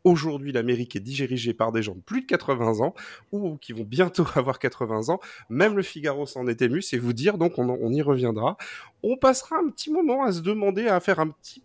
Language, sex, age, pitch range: French, male, 30-49, 130-180 Hz